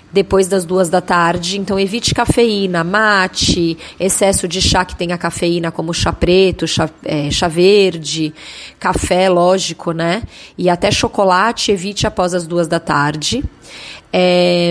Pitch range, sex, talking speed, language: 170-210 Hz, female, 145 wpm, Portuguese